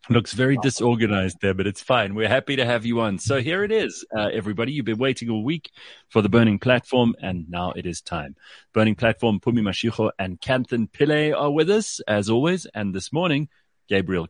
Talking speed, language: 205 wpm, English